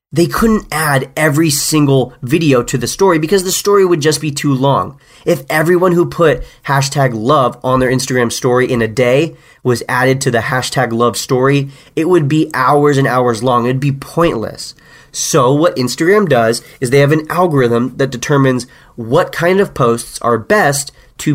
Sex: male